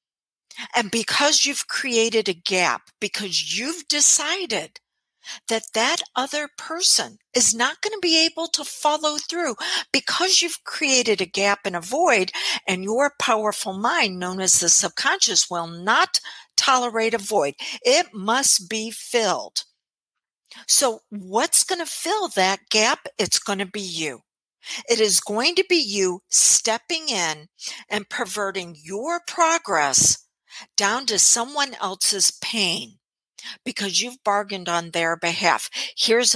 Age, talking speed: 60-79, 135 wpm